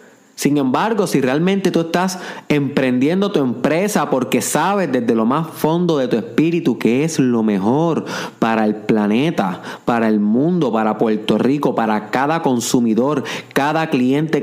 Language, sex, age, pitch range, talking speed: Spanish, male, 30-49, 115-165 Hz, 150 wpm